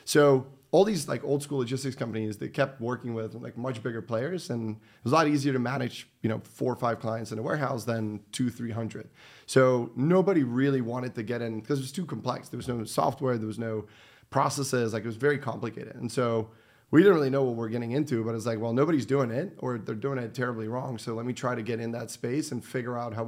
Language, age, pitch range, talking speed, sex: English, 30-49, 115-130 Hz, 255 wpm, male